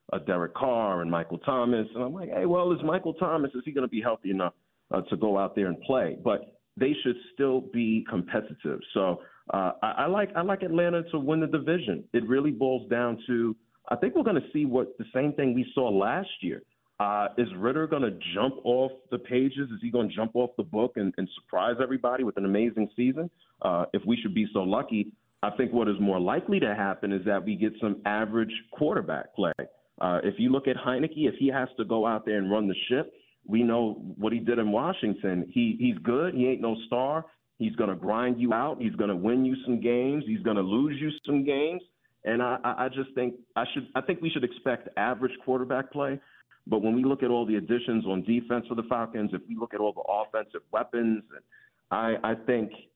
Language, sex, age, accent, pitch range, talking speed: English, male, 40-59, American, 110-135 Hz, 230 wpm